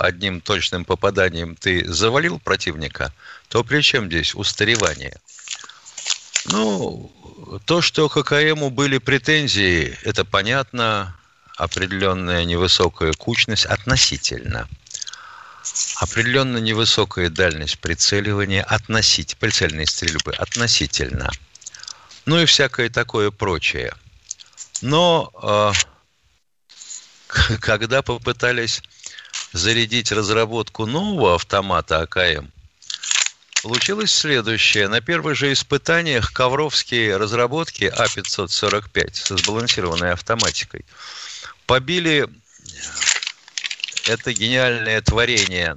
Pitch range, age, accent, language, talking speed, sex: 90-130 Hz, 50-69, native, Russian, 80 wpm, male